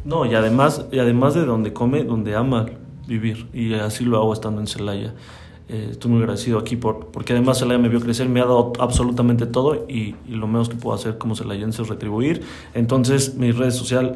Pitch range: 115-130 Hz